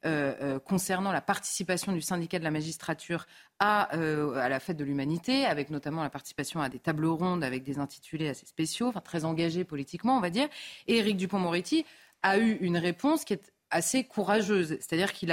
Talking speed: 195 wpm